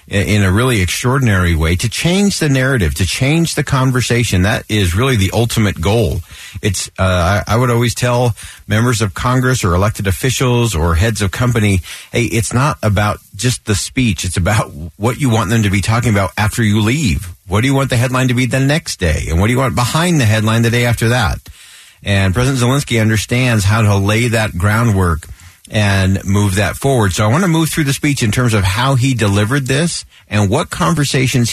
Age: 50-69